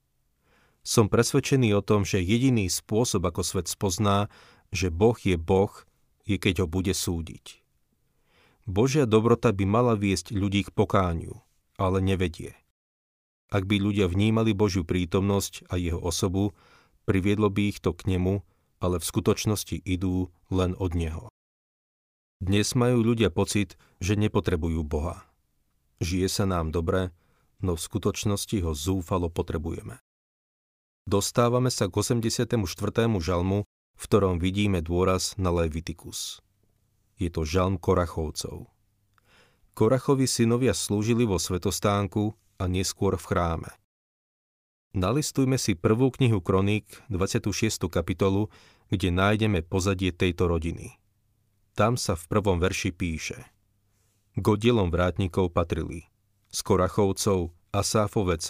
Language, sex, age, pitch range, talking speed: Slovak, male, 40-59, 90-105 Hz, 120 wpm